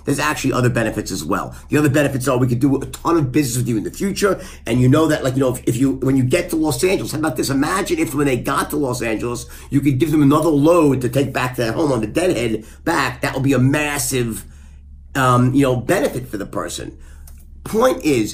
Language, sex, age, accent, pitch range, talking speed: English, male, 50-69, American, 115-160 Hz, 260 wpm